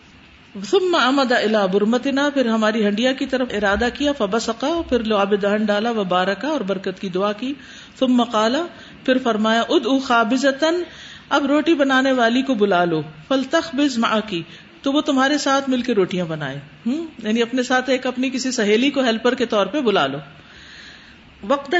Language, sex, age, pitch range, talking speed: Urdu, female, 50-69, 205-275 Hz, 170 wpm